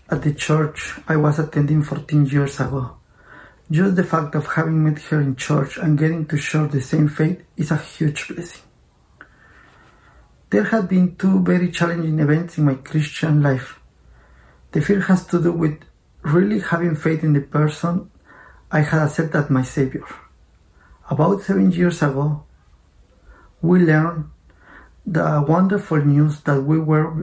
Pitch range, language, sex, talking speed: 145-170 Hz, English, male, 155 wpm